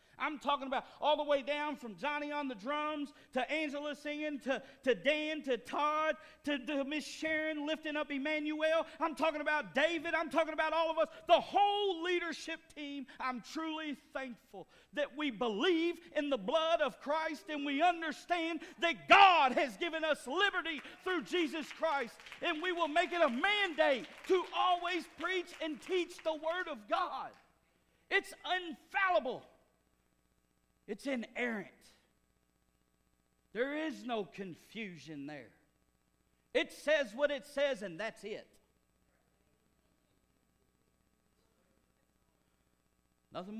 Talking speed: 135 wpm